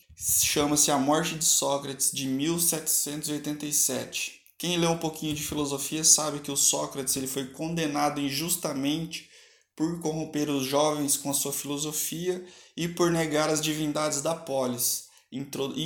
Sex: male